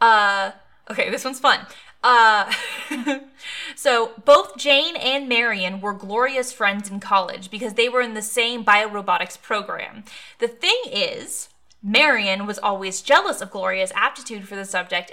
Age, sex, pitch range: 20-39, female, 195-260 Hz